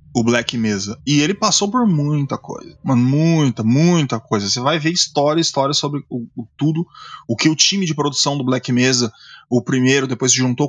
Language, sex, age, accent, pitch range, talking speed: Portuguese, male, 20-39, Brazilian, 130-160 Hz, 190 wpm